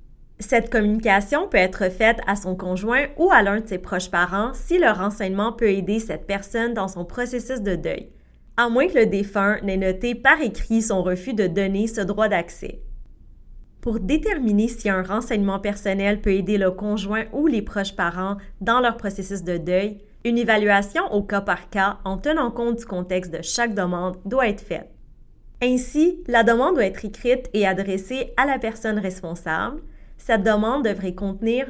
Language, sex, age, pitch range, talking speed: French, female, 20-39, 195-235 Hz, 175 wpm